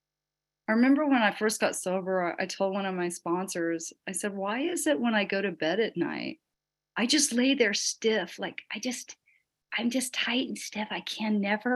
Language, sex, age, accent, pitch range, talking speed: English, female, 40-59, American, 170-235 Hz, 210 wpm